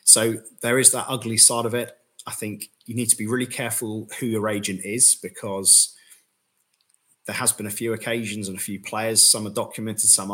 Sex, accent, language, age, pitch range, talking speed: male, British, English, 30-49, 100-115 Hz, 205 wpm